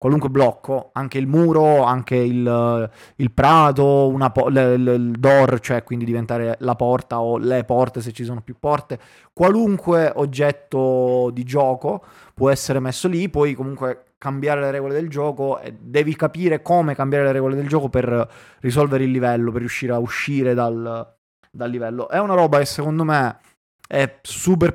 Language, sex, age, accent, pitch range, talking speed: Italian, male, 20-39, native, 125-145 Hz, 170 wpm